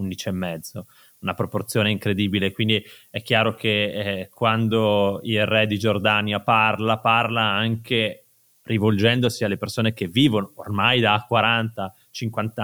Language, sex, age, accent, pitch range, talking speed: Italian, male, 20-39, native, 105-130 Hz, 130 wpm